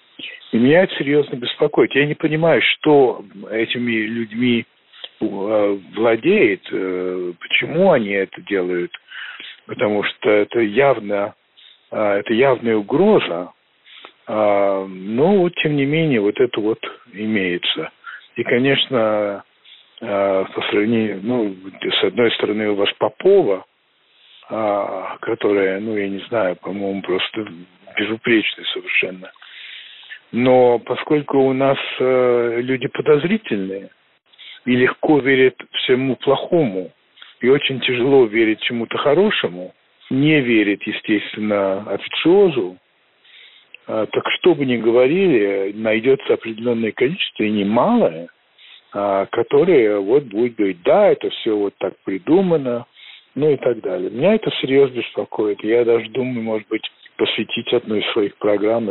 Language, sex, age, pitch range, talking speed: Russian, male, 50-69, 100-140 Hz, 115 wpm